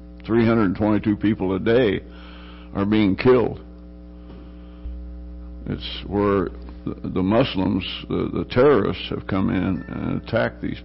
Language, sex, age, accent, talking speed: English, male, 60-79, American, 105 wpm